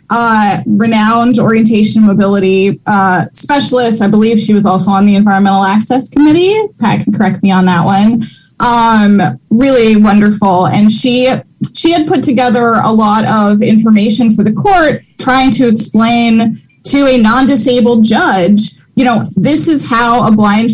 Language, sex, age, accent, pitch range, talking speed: English, female, 20-39, American, 210-250 Hz, 155 wpm